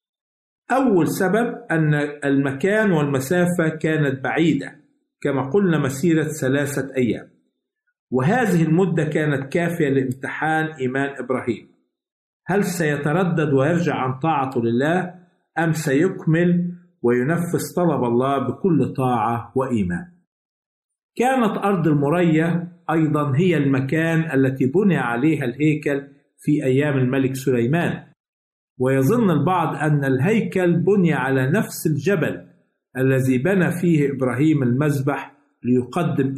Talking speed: 100 wpm